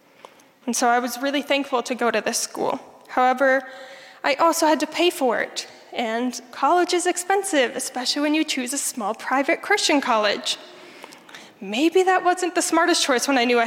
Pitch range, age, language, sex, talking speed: 245-290 Hz, 10-29, English, female, 185 wpm